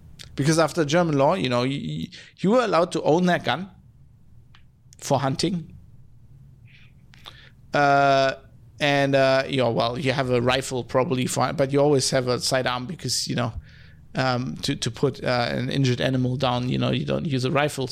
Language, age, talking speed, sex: English, 50-69, 180 wpm, male